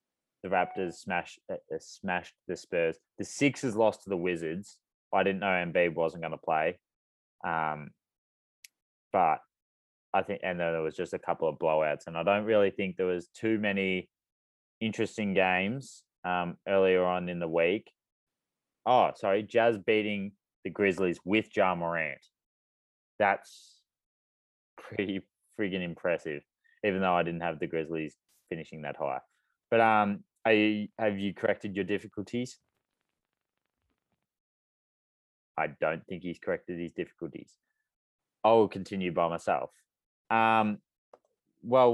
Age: 20-39